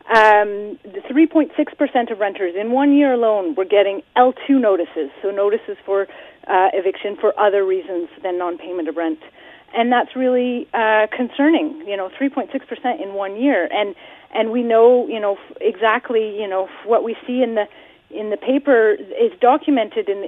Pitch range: 205-280 Hz